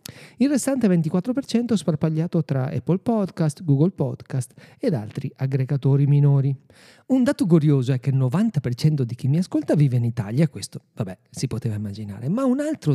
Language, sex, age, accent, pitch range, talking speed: Italian, male, 40-59, native, 130-185 Hz, 165 wpm